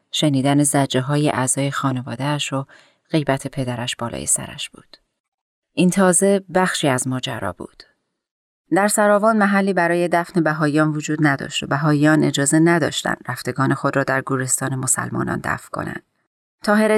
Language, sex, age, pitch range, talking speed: Persian, female, 30-49, 145-185 Hz, 135 wpm